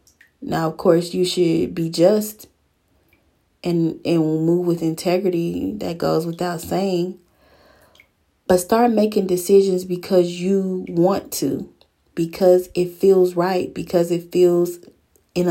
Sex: female